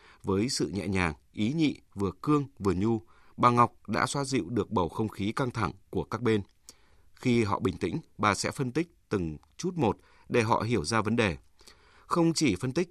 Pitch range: 95-130 Hz